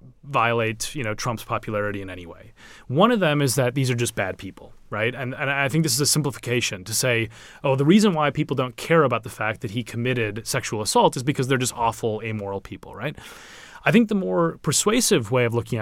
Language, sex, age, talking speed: English, male, 30-49, 230 wpm